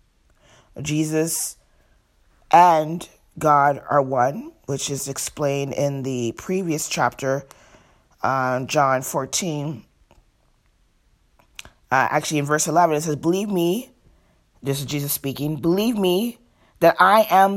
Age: 30-49